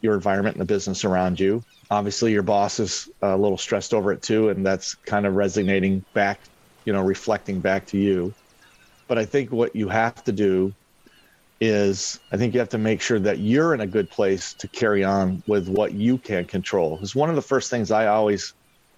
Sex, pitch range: male, 95-115 Hz